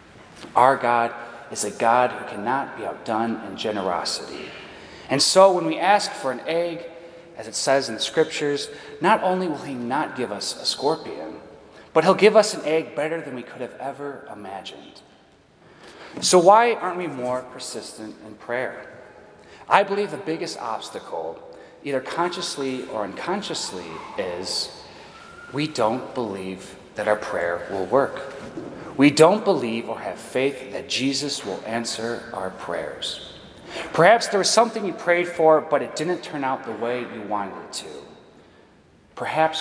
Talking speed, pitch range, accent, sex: 160 wpm, 110-165 Hz, American, male